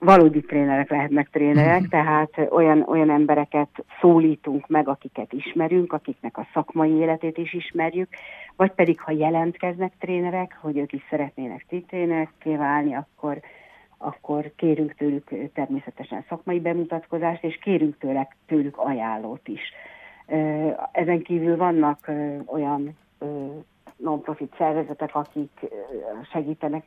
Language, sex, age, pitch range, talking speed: Hungarian, female, 60-79, 145-160 Hz, 110 wpm